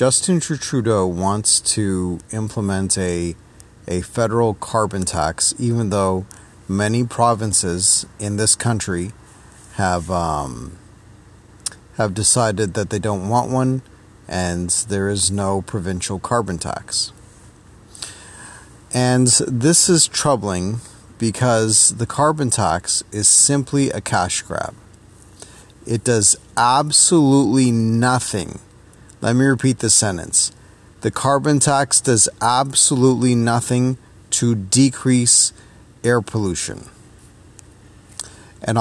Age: 40-59